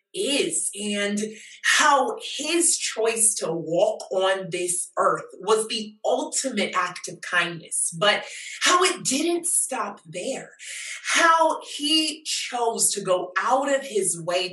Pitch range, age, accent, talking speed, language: 190-280 Hz, 30-49, American, 130 wpm, English